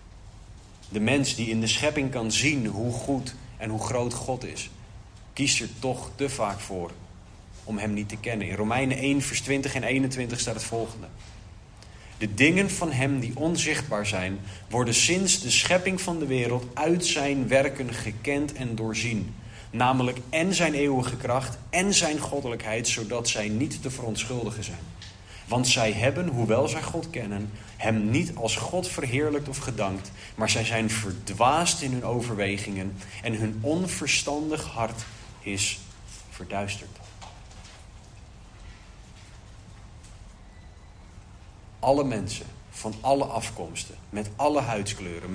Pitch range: 100-135 Hz